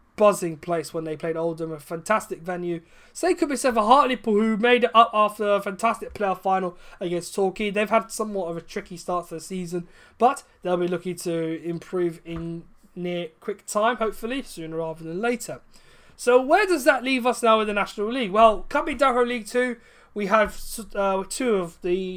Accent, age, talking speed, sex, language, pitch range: British, 20-39, 200 wpm, male, English, 175-225 Hz